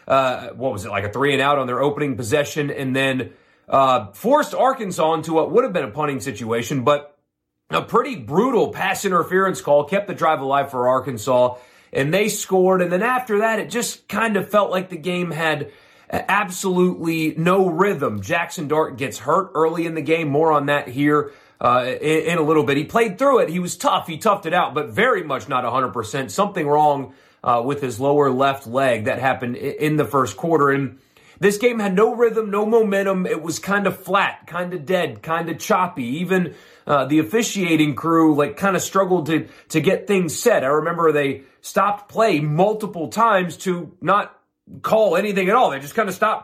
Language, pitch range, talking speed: English, 140-195 Hz, 205 wpm